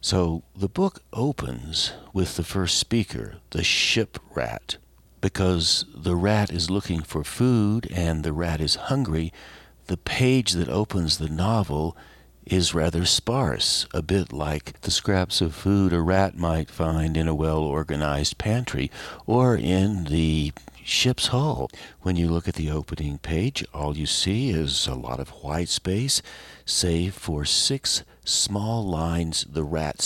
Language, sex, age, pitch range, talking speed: English, male, 50-69, 75-95 Hz, 150 wpm